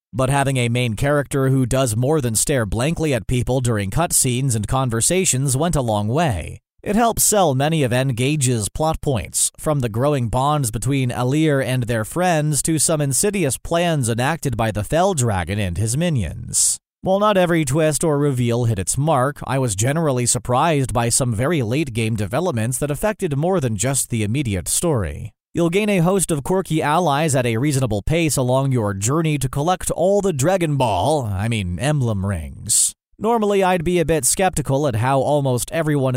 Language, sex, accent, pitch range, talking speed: English, male, American, 120-160 Hz, 185 wpm